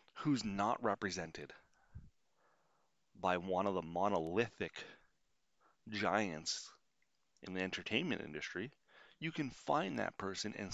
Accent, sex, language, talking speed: American, male, English, 105 wpm